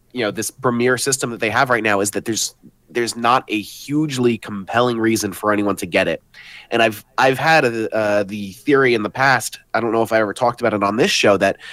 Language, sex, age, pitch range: English, male, 30-49, 105-130 Hz